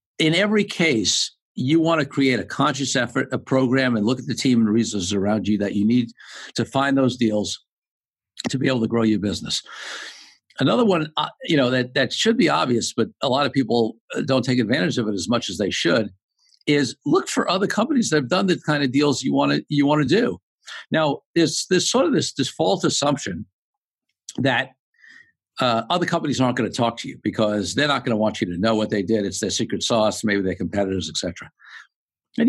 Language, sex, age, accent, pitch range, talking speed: English, male, 60-79, American, 115-165 Hz, 220 wpm